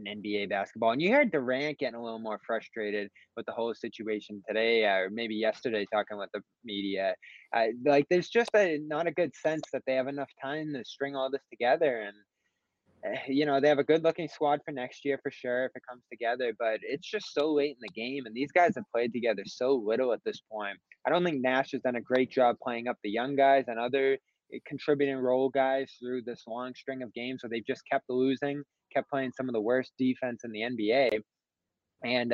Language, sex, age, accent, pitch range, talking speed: English, male, 20-39, American, 115-140 Hz, 225 wpm